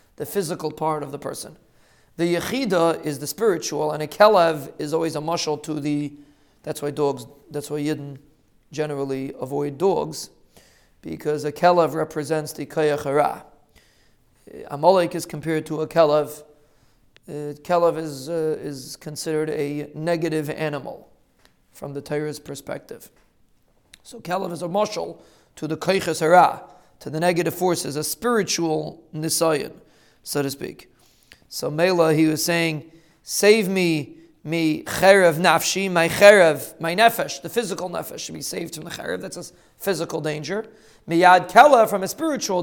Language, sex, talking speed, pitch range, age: English, male, 145 wpm, 150-185 Hz, 40-59